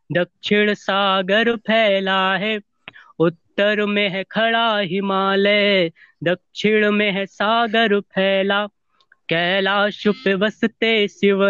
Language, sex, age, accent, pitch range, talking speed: Hindi, female, 20-39, native, 190-210 Hz, 95 wpm